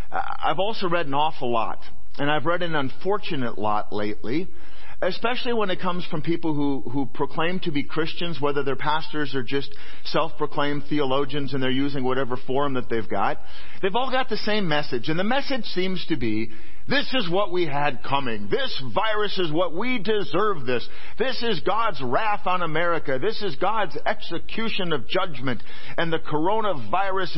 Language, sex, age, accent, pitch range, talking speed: English, male, 40-59, American, 125-180 Hz, 175 wpm